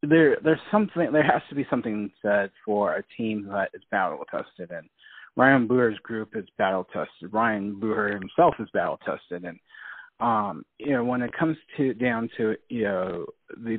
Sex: male